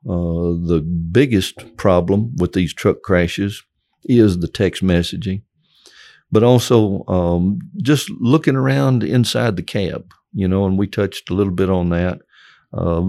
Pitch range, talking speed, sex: 90-110 Hz, 145 wpm, male